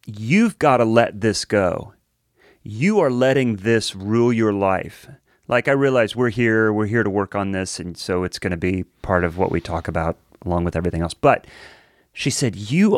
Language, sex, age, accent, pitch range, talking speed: English, male, 30-49, American, 100-125 Hz, 200 wpm